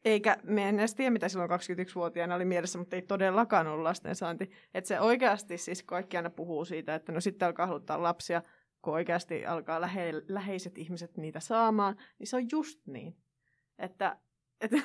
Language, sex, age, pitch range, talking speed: Finnish, female, 20-39, 175-225 Hz, 175 wpm